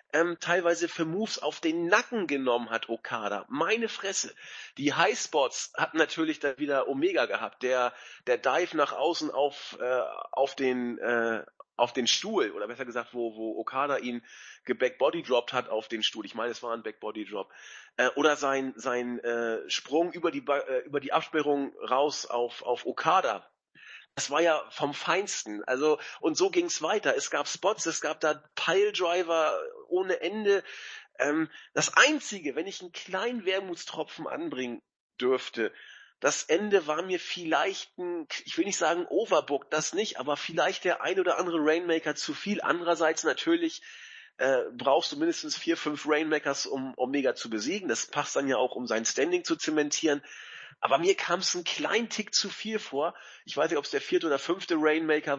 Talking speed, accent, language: 180 wpm, German, German